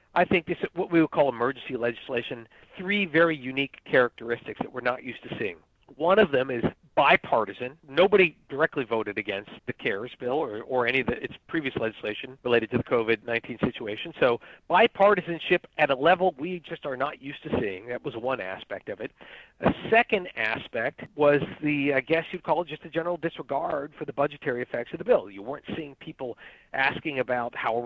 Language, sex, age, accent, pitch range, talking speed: English, male, 50-69, American, 125-170 Hz, 195 wpm